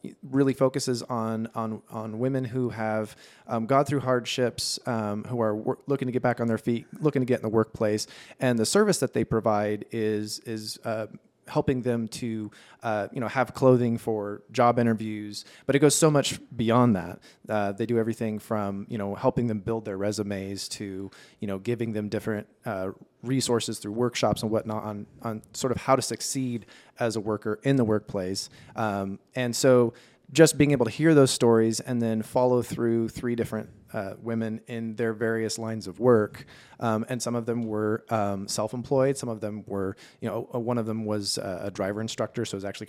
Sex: male